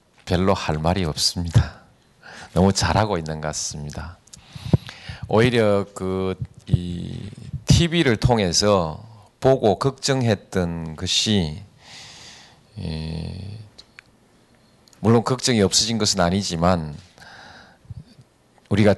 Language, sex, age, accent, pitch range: Korean, male, 40-59, native, 85-110 Hz